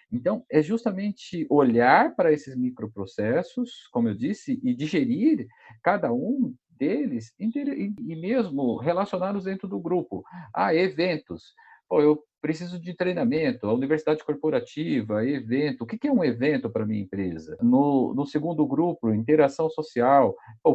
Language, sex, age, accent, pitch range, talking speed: Portuguese, male, 50-69, Brazilian, 145-235 Hz, 140 wpm